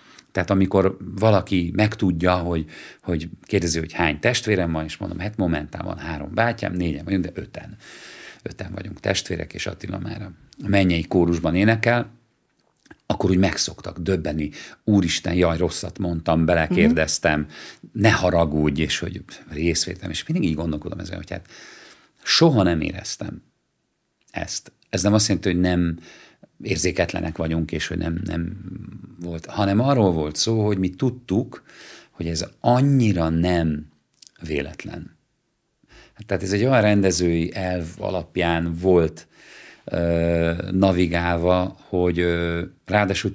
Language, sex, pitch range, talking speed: Hungarian, male, 85-100 Hz, 125 wpm